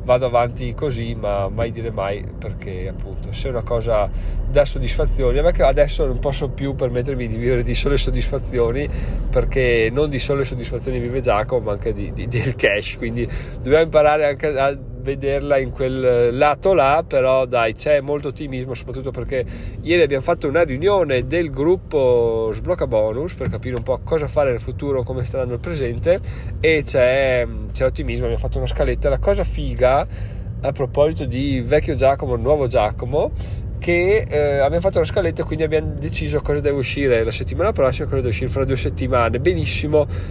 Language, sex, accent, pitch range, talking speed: Italian, male, native, 115-140 Hz, 180 wpm